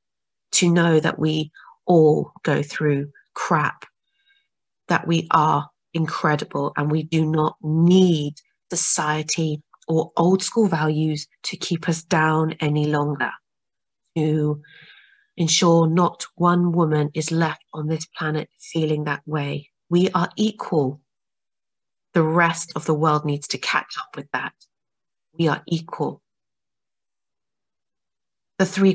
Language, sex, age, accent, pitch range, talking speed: English, female, 30-49, British, 150-170 Hz, 125 wpm